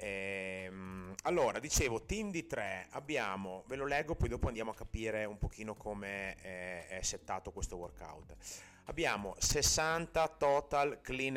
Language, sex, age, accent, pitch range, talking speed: Italian, male, 30-49, native, 95-125 Hz, 135 wpm